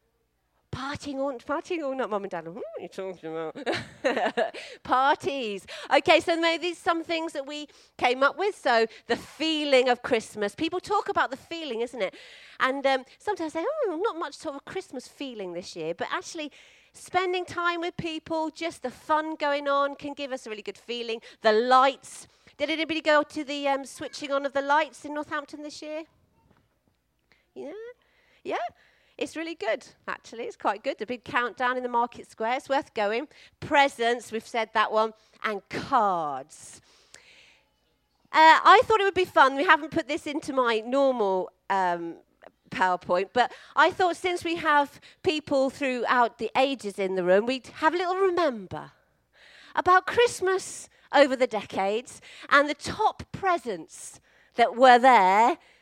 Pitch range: 230-320 Hz